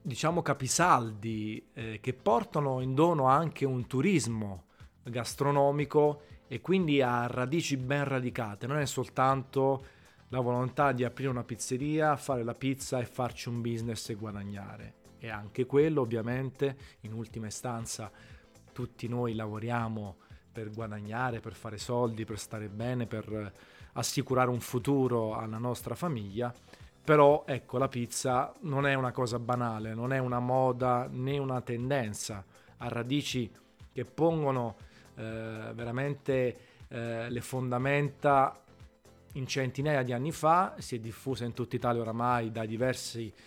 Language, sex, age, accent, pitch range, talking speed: Italian, male, 30-49, native, 115-140 Hz, 135 wpm